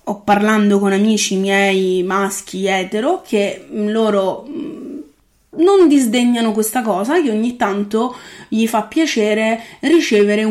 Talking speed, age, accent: 115 wpm, 20-39, native